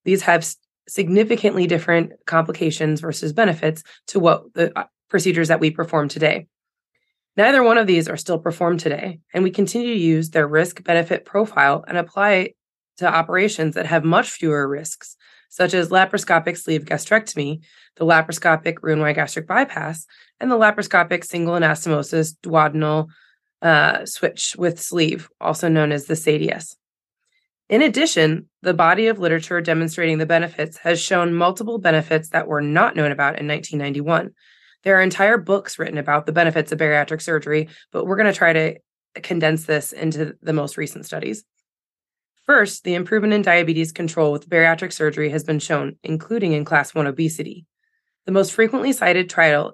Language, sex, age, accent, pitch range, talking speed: English, female, 20-39, American, 155-190 Hz, 160 wpm